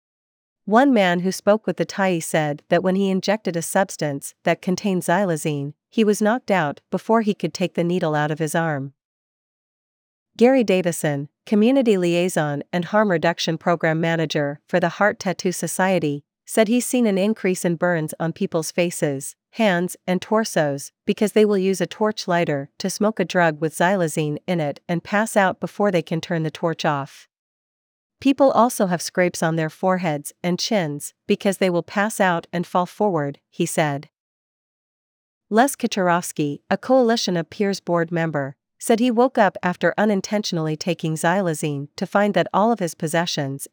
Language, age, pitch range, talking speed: English, 40-59, 160-200 Hz, 170 wpm